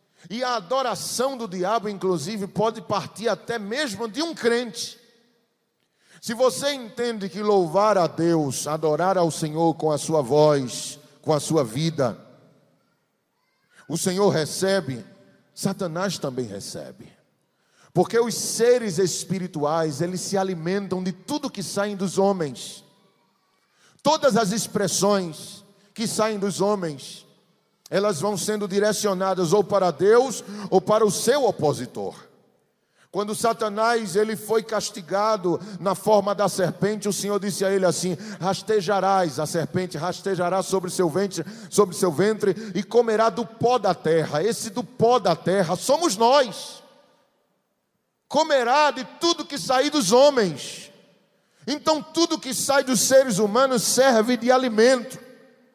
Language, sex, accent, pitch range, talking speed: Portuguese, male, Brazilian, 180-230 Hz, 130 wpm